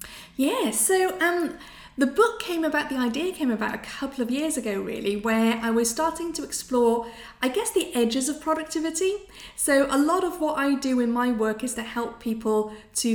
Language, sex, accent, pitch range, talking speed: English, female, British, 220-275 Hz, 200 wpm